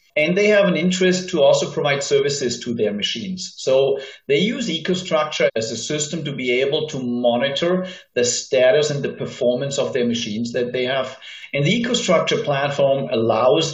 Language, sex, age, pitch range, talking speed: English, male, 40-59, 135-180 Hz, 175 wpm